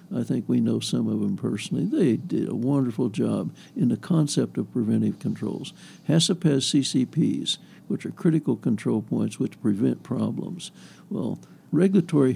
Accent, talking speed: American, 155 wpm